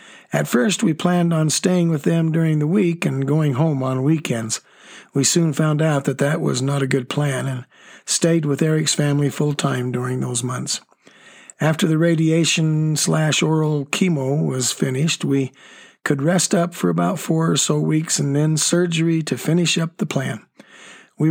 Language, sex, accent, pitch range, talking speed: English, male, American, 140-170 Hz, 170 wpm